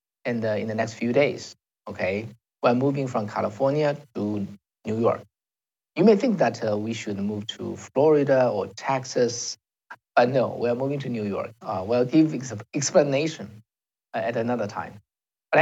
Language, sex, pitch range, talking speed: English, male, 110-130 Hz, 170 wpm